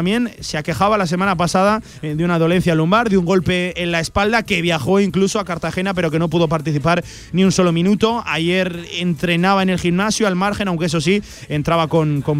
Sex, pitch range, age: male, 160-195 Hz, 30-49